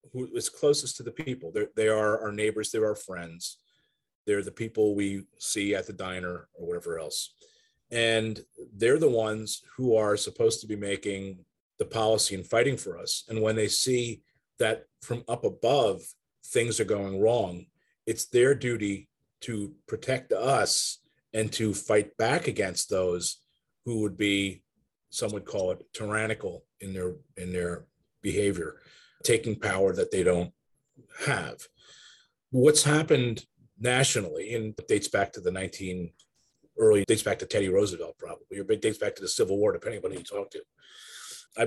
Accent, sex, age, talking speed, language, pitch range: American, male, 30-49, 165 wpm, English, 100-150 Hz